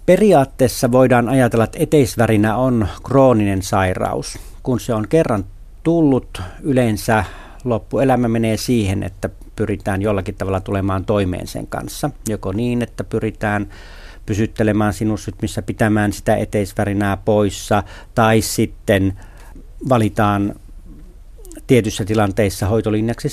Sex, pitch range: male, 95-120 Hz